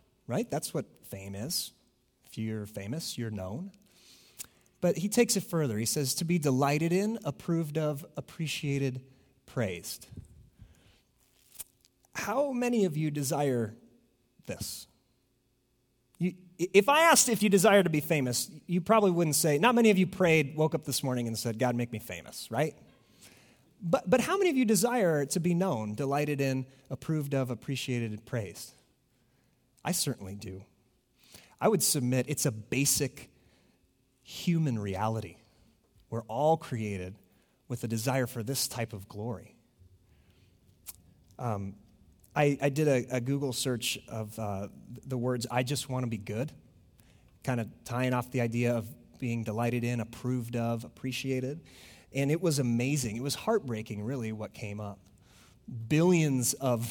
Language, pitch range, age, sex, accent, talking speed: English, 115-155 Hz, 30-49, male, American, 150 wpm